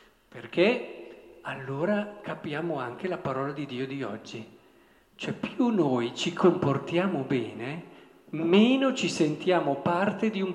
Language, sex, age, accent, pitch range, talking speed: Italian, male, 50-69, native, 140-205 Hz, 125 wpm